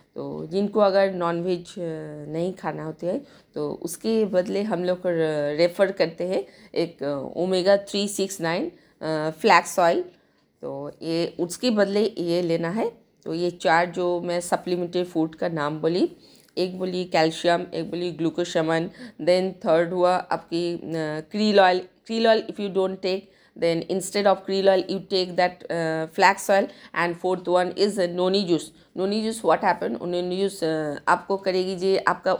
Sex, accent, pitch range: female, native, 170-195 Hz